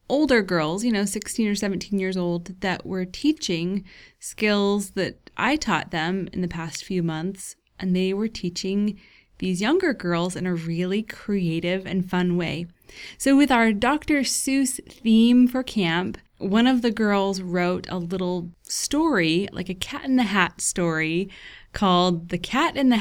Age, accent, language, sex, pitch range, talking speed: 20-39, American, English, female, 175-230 Hz, 165 wpm